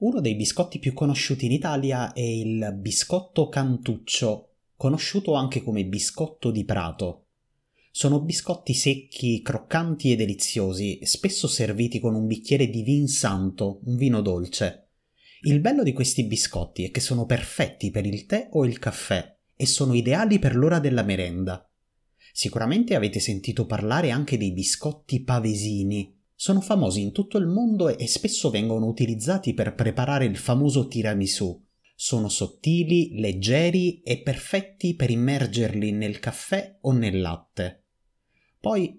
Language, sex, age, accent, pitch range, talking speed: Italian, male, 30-49, native, 105-145 Hz, 140 wpm